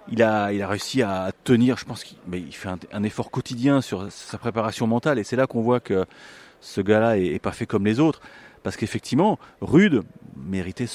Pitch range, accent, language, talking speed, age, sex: 105-130 Hz, French, French, 215 wpm, 30-49, male